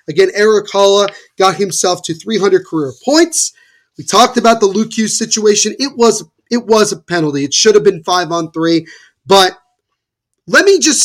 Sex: male